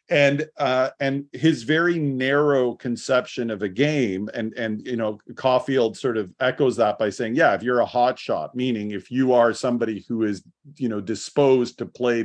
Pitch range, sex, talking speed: 115-140 Hz, male, 190 wpm